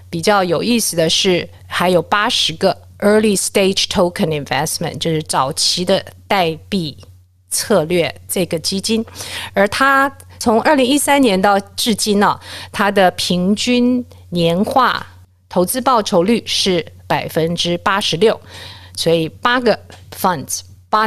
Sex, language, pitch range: female, Chinese, 155-215 Hz